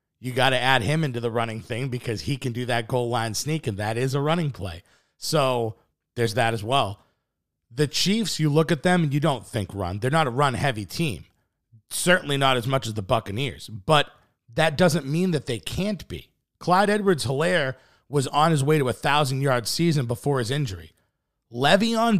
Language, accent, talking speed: English, American, 205 wpm